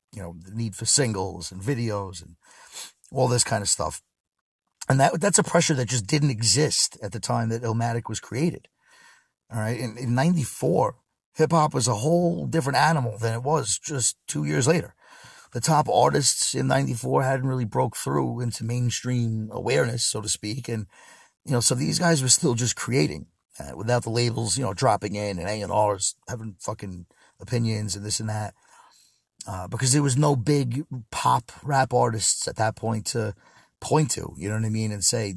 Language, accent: English, American